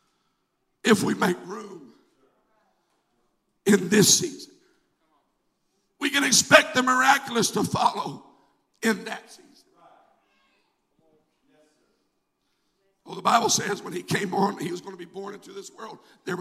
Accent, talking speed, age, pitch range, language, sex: American, 130 wpm, 60-79, 205-255 Hz, English, male